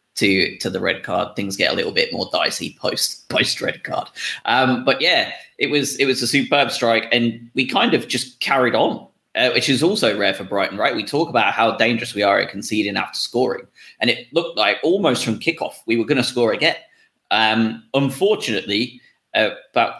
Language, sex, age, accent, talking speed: English, male, 20-39, British, 210 wpm